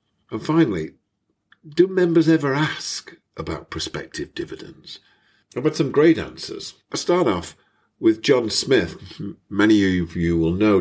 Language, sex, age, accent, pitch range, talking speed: English, male, 50-69, British, 85-120 Hz, 140 wpm